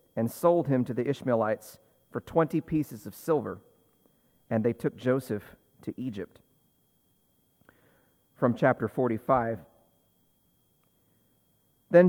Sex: male